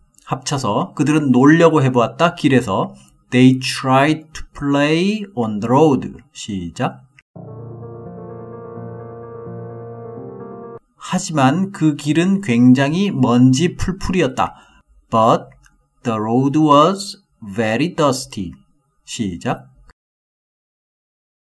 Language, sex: Korean, male